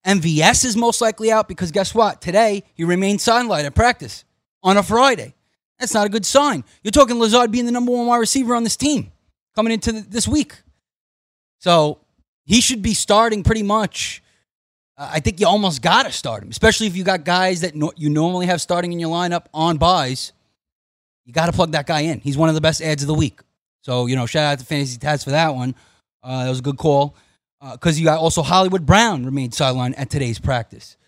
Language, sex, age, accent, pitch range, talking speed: English, male, 30-49, American, 140-210 Hz, 225 wpm